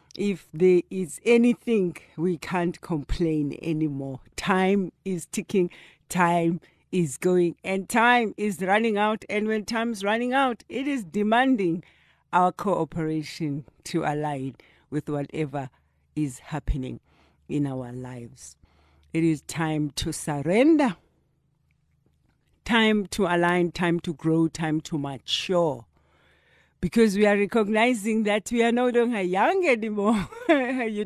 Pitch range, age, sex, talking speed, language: 165-215 Hz, 60-79, female, 125 wpm, Dutch